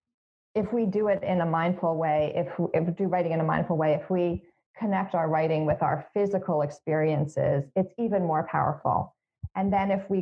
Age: 40-59